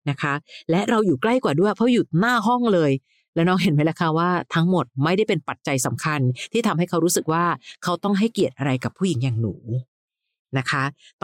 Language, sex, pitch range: Thai, female, 140-185 Hz